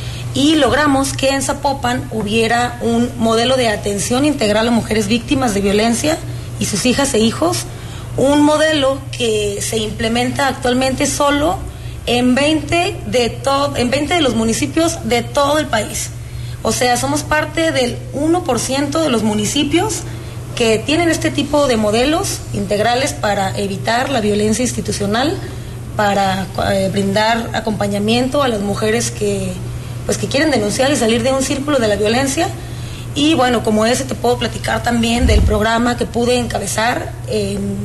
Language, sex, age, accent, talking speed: Spanish, female, 30-49, Mexican, 150 wpm